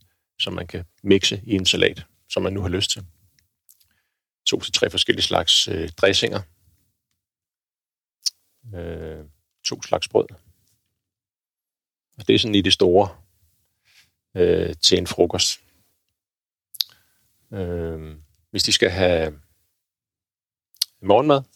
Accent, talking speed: native, 110 wpm